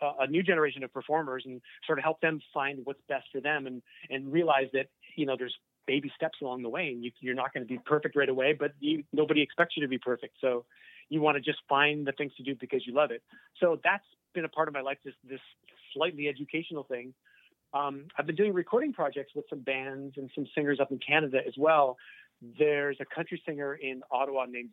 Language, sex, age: English, male, 30-49